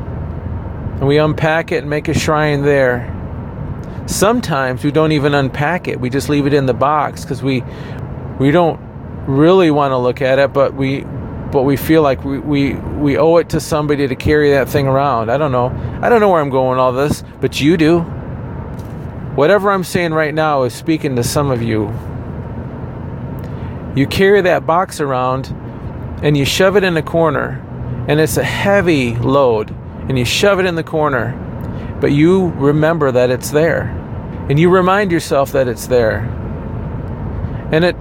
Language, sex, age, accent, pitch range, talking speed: English, male, 40-59, American, 125-160 Hz, 180 wpm